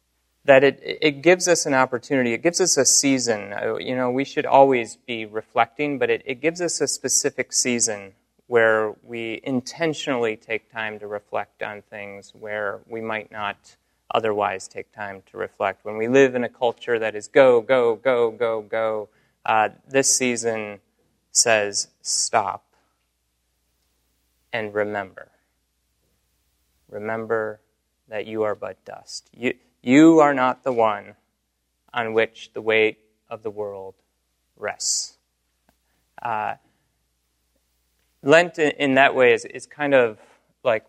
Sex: male